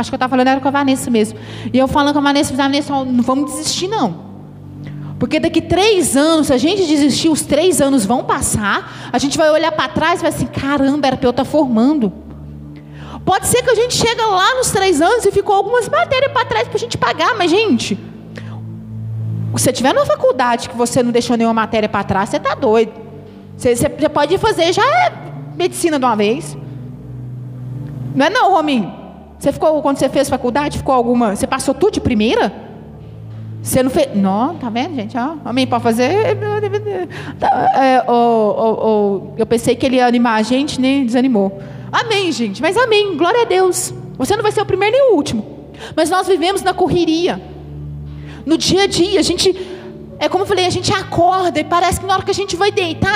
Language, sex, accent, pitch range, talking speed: Portuguese, female, Brazilian, 230-365 Hz, 210 wpm